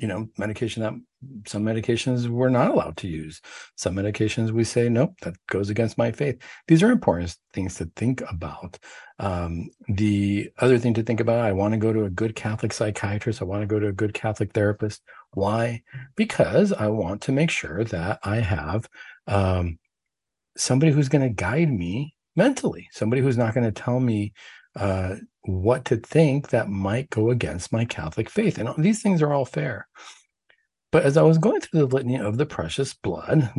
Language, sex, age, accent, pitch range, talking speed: English, male, 50-69, American, 100-135 Hz, 190 wpm